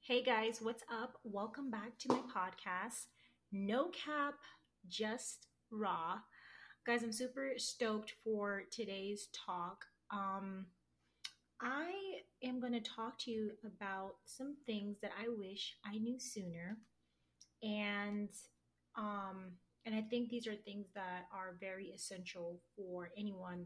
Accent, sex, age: American, female, 30-49